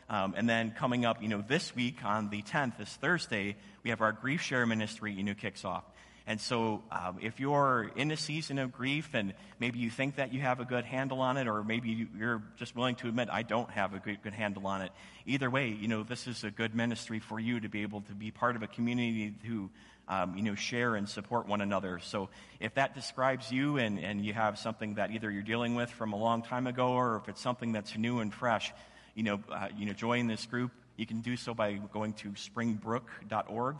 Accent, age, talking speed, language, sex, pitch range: American, 30-49, 240 wpm, English, male, 105-125 Hz